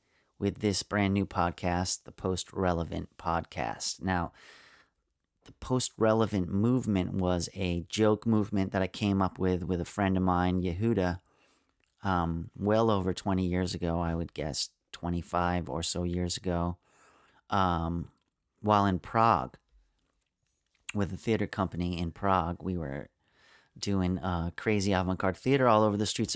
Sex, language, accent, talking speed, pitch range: male, English, American, 145 wpm, 85-100 Hz